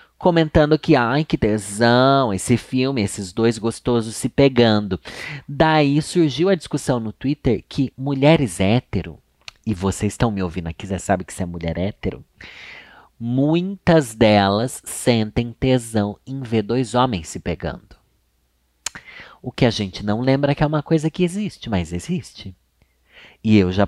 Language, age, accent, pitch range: Portuguese, 30-49, Brazilian, 95-135 Hz